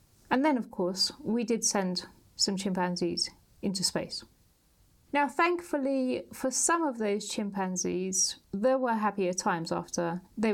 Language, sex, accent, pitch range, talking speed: English, female, British, 190-250 Hz, 135 wpm